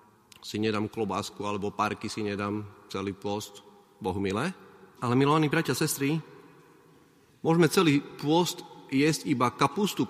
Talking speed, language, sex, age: 125 wpm, Slovak, male, 30-49